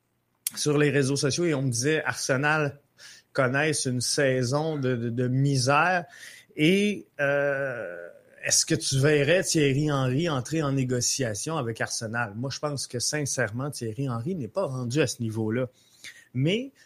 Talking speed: 155 wpm